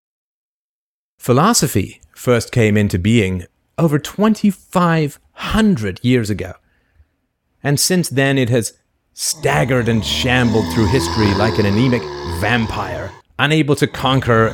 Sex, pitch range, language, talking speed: male, 100-150 Hz, English, 105 wpm